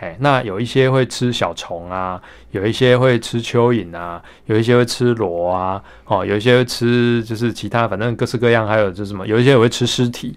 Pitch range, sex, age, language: 105-125 Hz, male, 20-39, Chinese